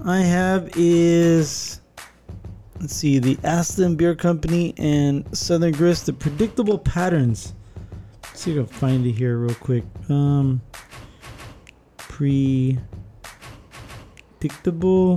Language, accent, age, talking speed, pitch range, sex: English, American, 20-39, 110 wpm, 110-185 Hz, male